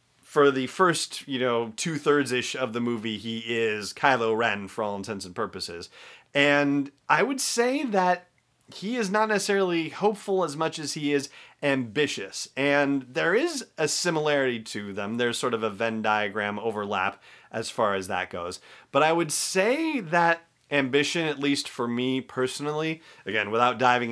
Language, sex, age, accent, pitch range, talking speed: English, male, 30-49, American, 115-150 Hz, 165 wpm